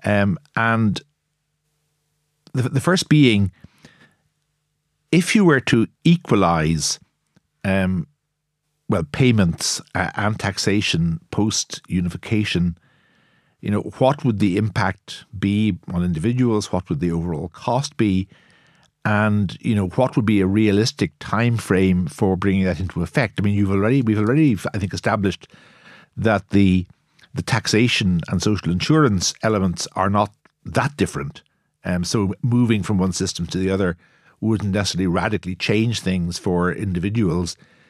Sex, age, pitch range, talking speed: male, 60-79, 90-120 Hz, 135 wpm